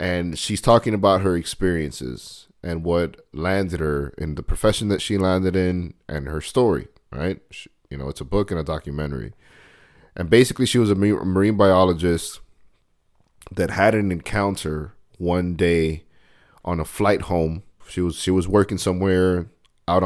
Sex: male